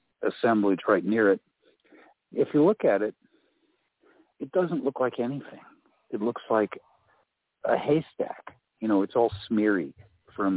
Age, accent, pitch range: 60-79, American, 100-125 Hz